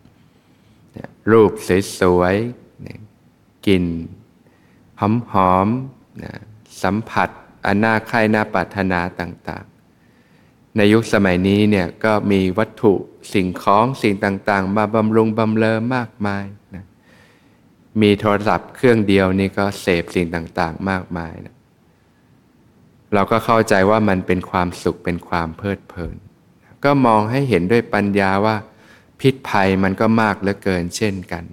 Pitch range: 95-110 Hz